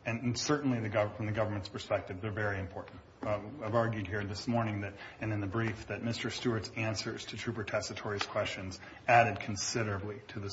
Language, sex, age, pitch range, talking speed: English, male, 30-49, 100-120 Hz, 190 wpm